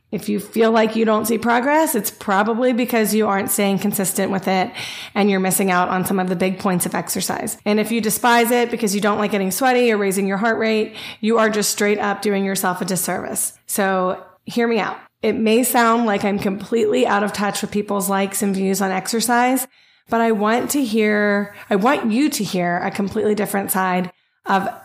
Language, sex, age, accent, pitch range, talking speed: English, female, 30-49, American, 190-230 Hz, 215 wpm